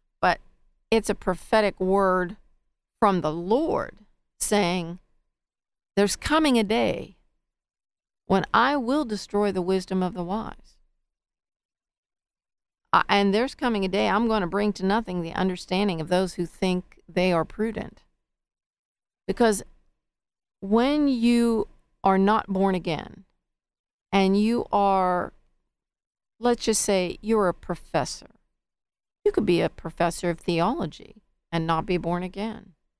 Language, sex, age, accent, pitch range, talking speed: English, female, 40-59, American, 175-220 Hz, 130 wpm